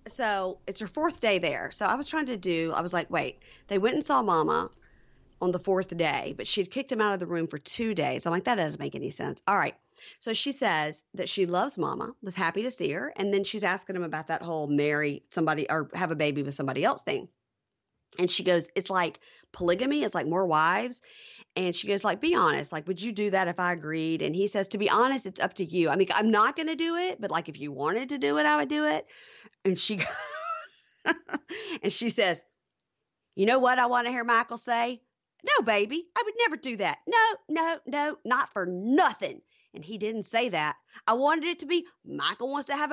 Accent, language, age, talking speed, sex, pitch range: American, English, 40-59, 240 wpm, female, 180-285 Hz